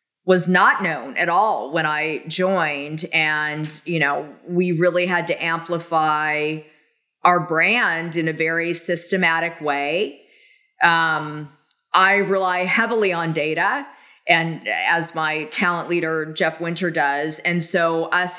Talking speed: 130 wpm